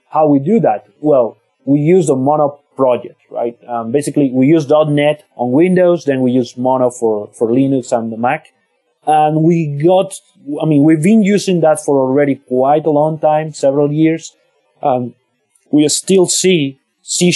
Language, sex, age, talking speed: English, male, 30-49, 175 wpm